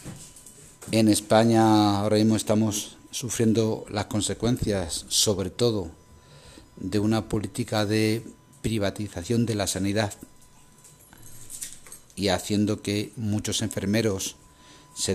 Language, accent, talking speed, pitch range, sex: Spanish, Spanish, 95 wpm, 100-140 Hz, male